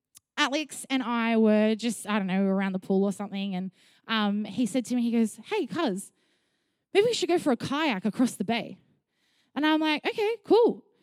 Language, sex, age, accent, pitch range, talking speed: English, female, 20-39, Australian, 215-275 Hz, 205 wpm